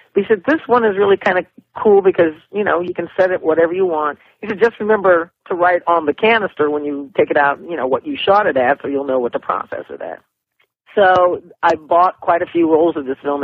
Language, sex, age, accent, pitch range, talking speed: English, male, 40-59, American, 140-180 Hz, 260 wpm